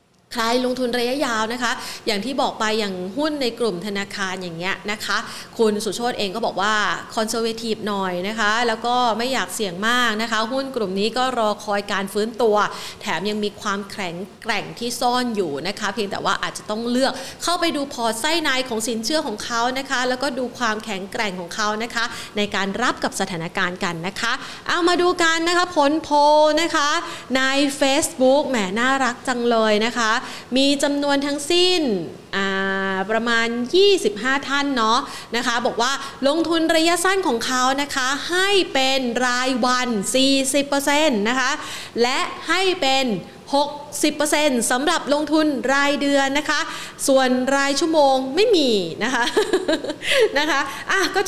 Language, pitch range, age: Thai, 215-290 Hz, 30-49